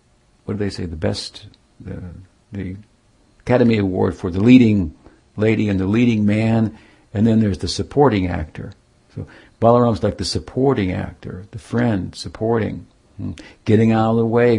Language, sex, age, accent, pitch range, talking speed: English, male, 60-79, American, 95-115 Hz, 155 wpm